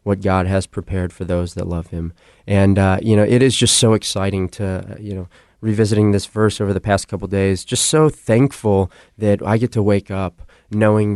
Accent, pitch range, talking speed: American, 95-105 Hz, 215 wpm